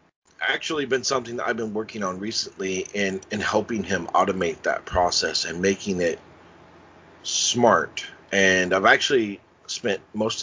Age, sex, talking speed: 40-59, male, 145 wpm